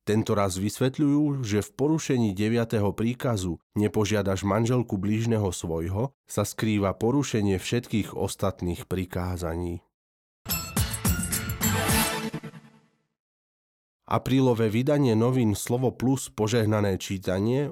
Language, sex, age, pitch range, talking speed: Slovak, male, 30-49, 95-115 Hz, 80 wpm